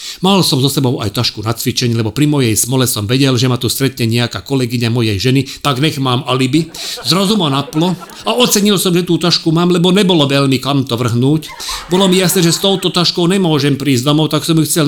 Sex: male